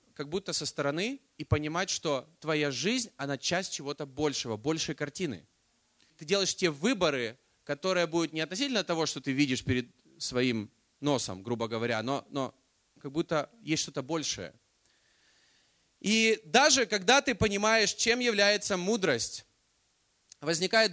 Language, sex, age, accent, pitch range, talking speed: Russian, male, 30-49, native, 145-215 Hz, 140 wpm